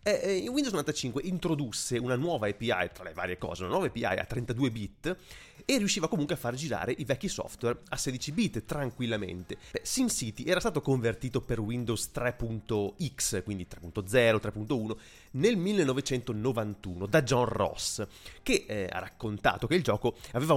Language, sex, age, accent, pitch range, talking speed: Italian, male, 30-49, native, 110-150 Hz, 150 wpm